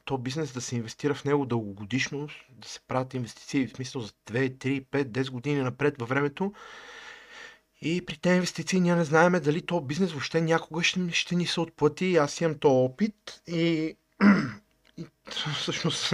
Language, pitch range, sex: Bulgarian, 130-170 Hz, male